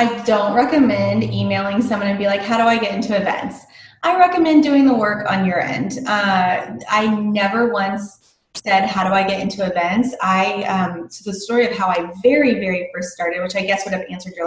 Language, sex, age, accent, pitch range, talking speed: English, female, 20-39, American, 195-270 Hz, 215 wpm